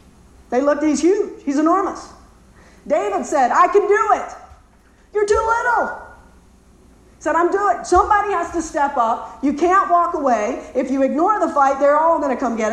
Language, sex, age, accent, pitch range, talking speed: English, female, 50-69, American, 265-340 Hz, 190 wpm